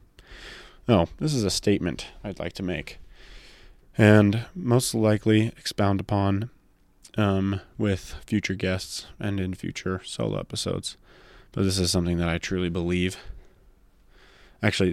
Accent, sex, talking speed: American, male, 130 wpm